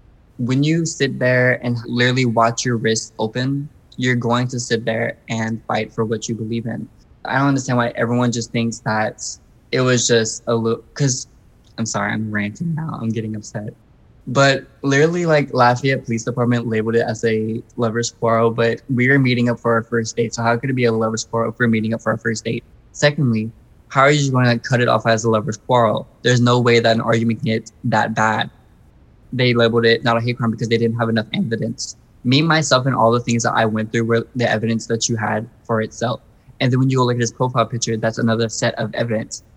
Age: 20-39